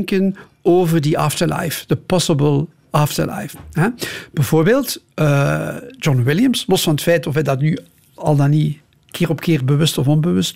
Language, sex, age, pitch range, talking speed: Dutch, male, 50-69, 145-170 Hz, 155 wpm